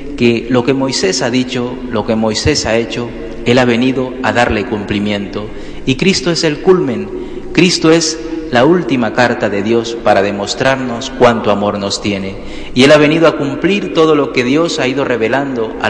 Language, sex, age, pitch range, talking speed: Spanish, male, 40-59, 110-140 Hz, 185 wpm